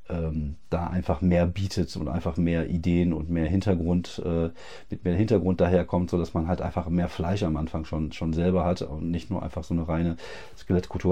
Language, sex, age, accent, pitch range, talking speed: German, male, 40-59, German, 85-105 Hz, 190 wpm